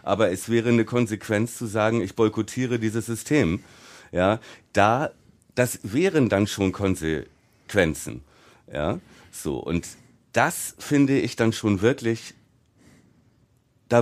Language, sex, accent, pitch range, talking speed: German, male, German, 105-125 Hz, 105 wpm